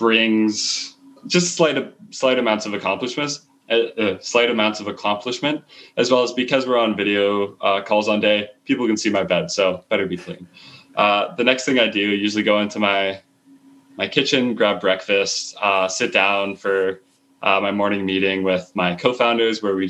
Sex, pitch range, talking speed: male, 95-125 Hz, 180 wpm